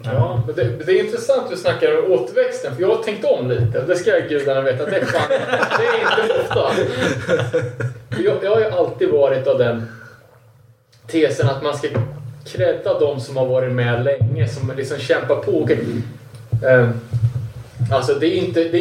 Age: 20-39